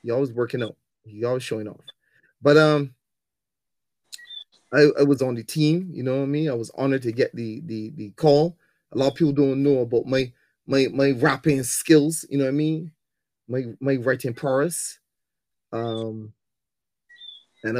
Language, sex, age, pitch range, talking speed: English, male, 30-49, 120-155 Hz, 180 wpm